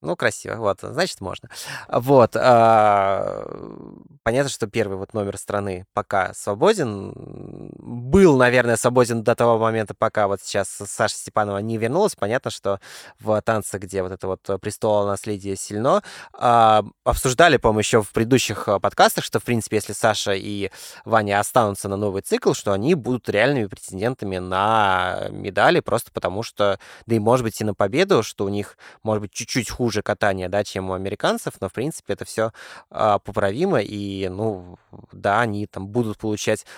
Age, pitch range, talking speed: 20-39, 100-120 Hz, 165 wpm